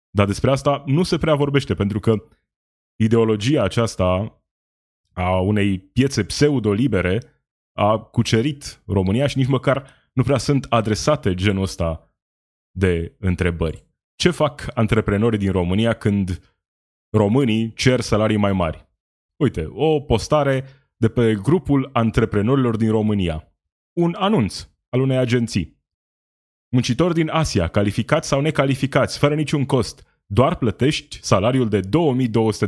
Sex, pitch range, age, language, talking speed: male, 100-140 Hz, 20-39, Romanian, 125 wpm